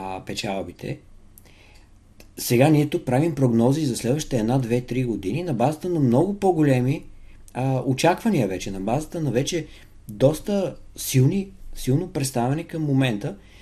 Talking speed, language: 120 wpm, Bulgarian